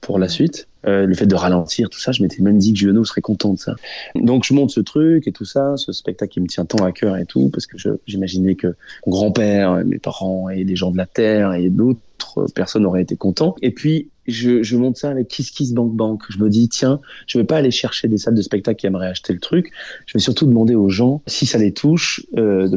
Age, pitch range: 20-39, 95-120 Hz